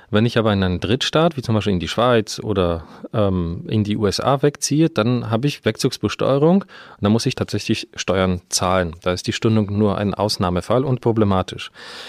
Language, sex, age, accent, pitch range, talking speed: German, male, 30-49, German, 105-135 Hz, 190 wpm